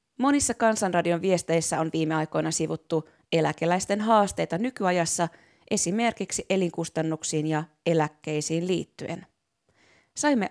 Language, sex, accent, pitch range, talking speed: Finnish, female, native, 160-195 Hz, 90 wpm